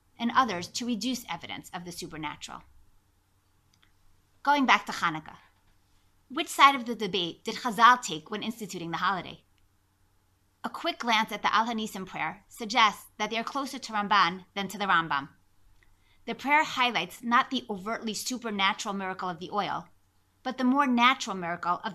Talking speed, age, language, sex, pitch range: 165 wpm, 30-49, English, female, 160-240 Hz